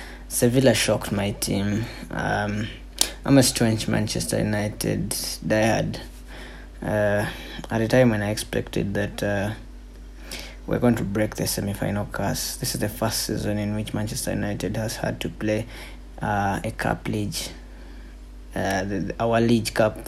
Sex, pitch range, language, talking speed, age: male, 105-120 Hz, English, 145 wpm, 20-39